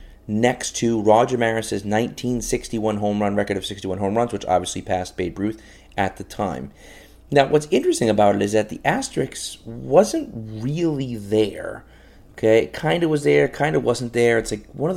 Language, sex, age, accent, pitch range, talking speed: English, male, 30-49, American, 105-125 Hz, 185 wpm